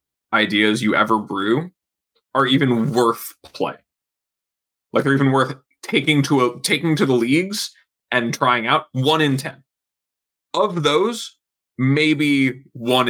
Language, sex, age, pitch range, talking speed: English, male, 20-39, 110-145 Hz, 135 wpm